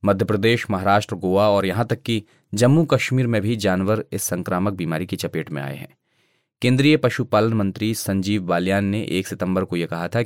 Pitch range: 95-115 Hz